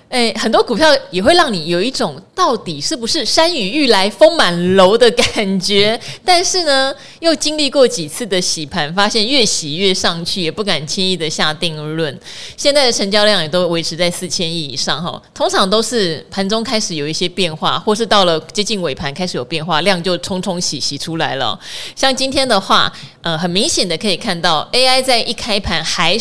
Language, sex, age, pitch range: Chinese, female, 30-49, 165-225 Hz